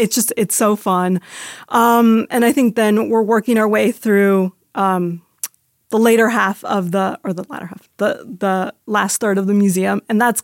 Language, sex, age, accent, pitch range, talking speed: English, female, 30-49, American, 195-225 Hz, 195 wpm